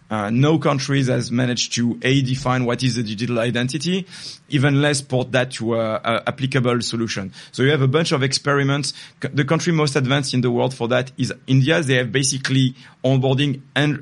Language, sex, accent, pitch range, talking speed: English, male, French, 125-145 Hz, 195 wpm